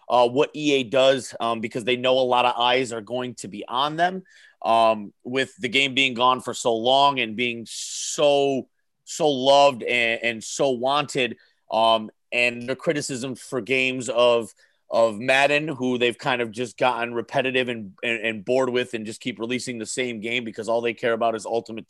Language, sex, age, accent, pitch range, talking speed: English, male, 30-49, American, 115-130 Hz, 195 wpm